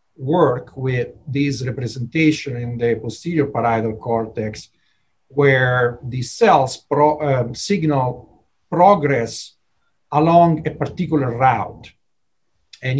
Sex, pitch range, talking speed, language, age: male, 120-155 Hz, 90 wpm, English, 40-59